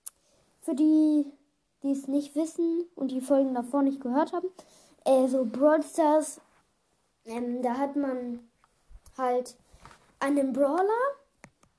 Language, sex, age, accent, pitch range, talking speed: German, female, 10-29, German, 255-315 Hz, 125 wpm